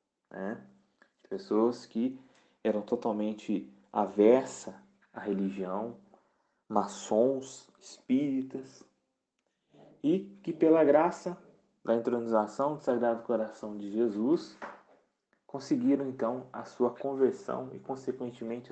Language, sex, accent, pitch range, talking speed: Portuguese, male, Brazilian, 115-175 Hz, 90 wpm